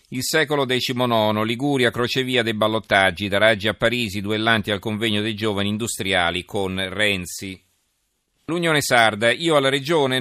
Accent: native